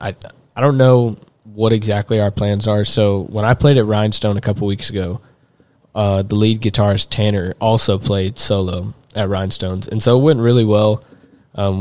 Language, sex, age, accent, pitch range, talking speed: English, male, 20-39, American, 100-115 Hz, 190 wpm